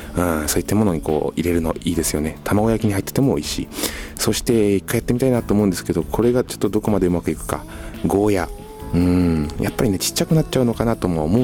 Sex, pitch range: male, 75-100 Hz